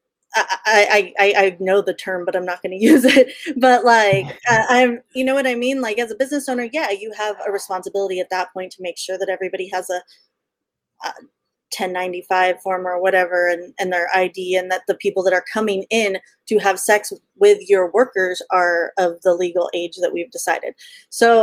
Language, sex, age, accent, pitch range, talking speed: English, female, 30-49, American, 185-245 Hz, 205 wpm